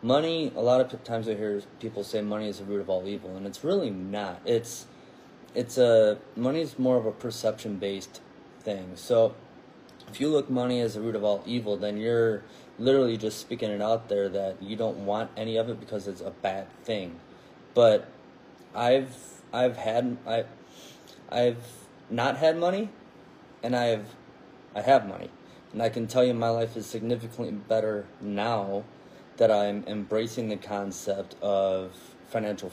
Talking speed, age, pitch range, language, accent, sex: 170 wpm, 20-39, 105-120 Hz, English, American, male